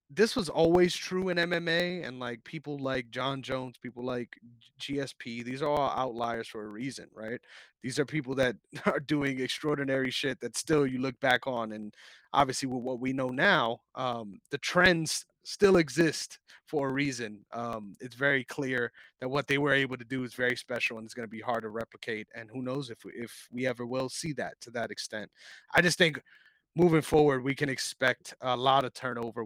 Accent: American